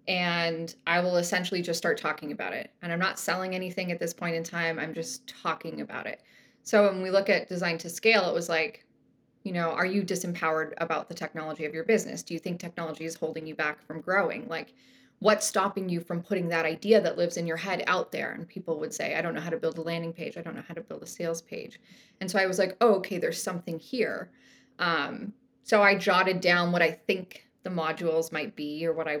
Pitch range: 165-200 Hz